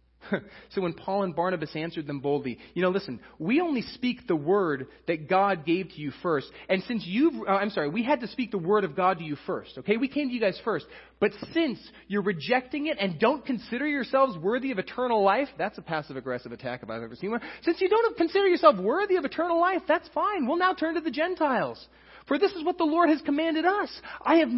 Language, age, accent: English, 30-49, American